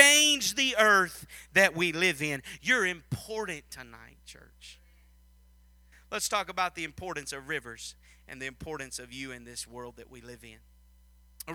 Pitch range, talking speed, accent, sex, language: 120-150 Hz, 160 wpm, American, male, English